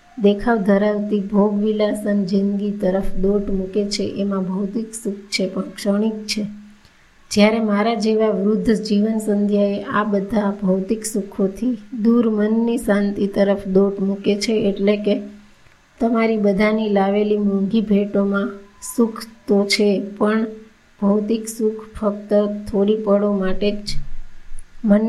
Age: 20-39